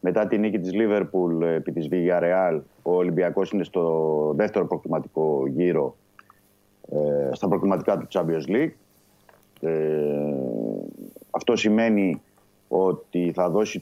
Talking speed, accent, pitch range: 115 wpm, native, 80-100 Hz